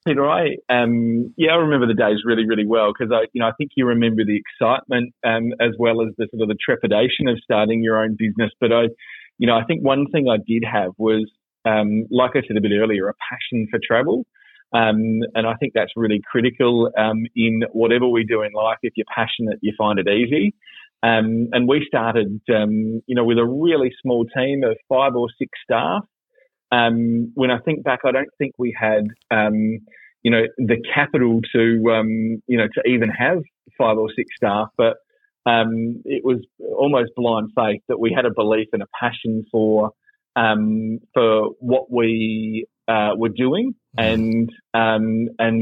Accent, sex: Australian, male